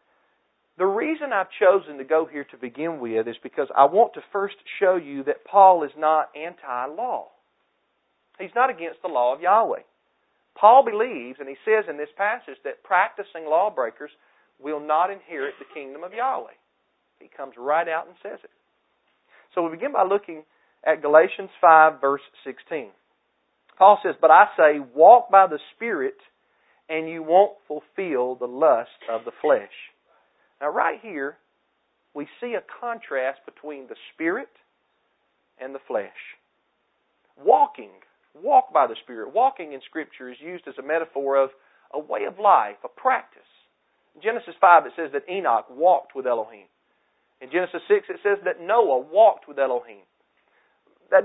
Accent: American